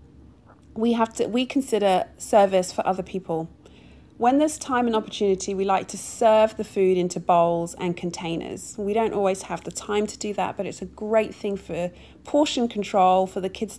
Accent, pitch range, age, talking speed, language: British, 180-215 Hz, 30-49, 190 wpm, English